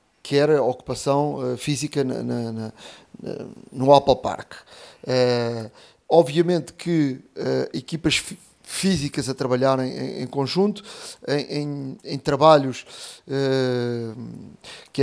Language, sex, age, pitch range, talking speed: Portuguese, male, 30-49, 135-175 Hz, 115 wpm